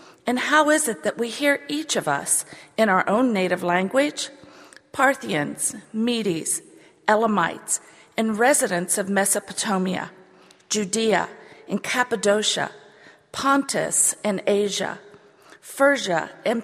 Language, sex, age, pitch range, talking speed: English, female, 50-69, 190-260 Hz, 110 wpm